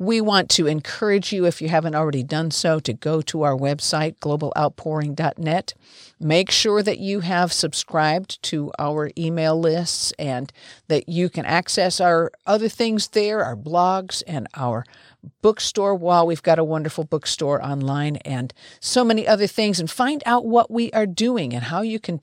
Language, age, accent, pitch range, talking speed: English, 50-69, American, 155-200 Hz, 175 wpm